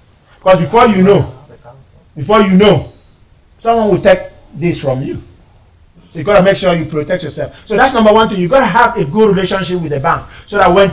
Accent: Nigerian